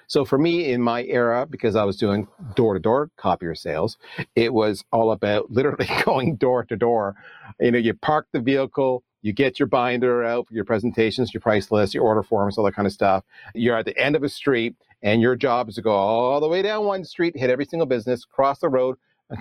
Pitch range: 110-165 Hz